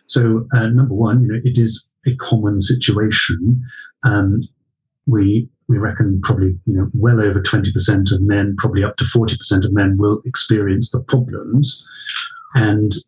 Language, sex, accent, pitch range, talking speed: English, male, British, 105-125 Hz, 155 wpm